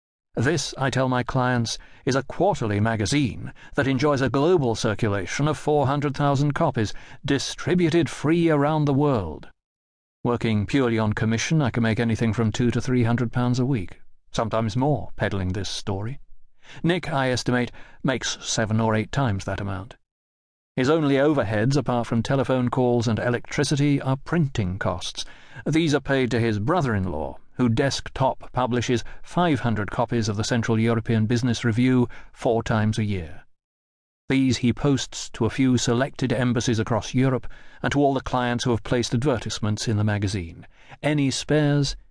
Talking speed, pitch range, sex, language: 160 wpm, 110-140 Hz, male, English